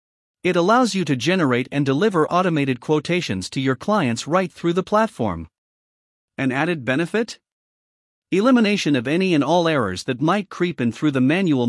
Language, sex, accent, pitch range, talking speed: English, male, American, 130-180 Hz, 165 wpm